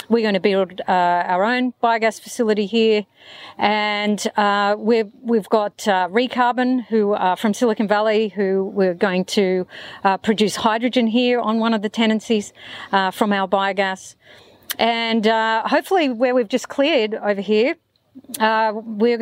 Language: English